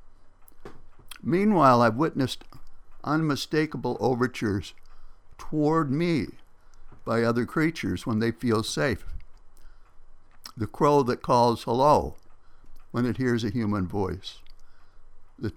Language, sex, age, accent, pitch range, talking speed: English, male, 60-79, American, 95-125 Hz, 100 wpm